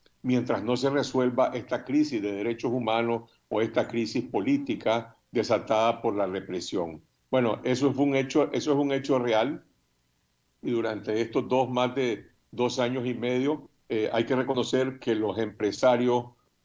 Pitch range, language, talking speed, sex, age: 115-135 Hz, Spanish, 145 wpm, male, 60-79